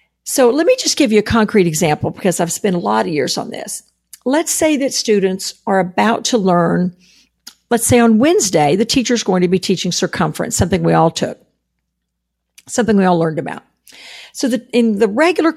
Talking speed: 195 wpm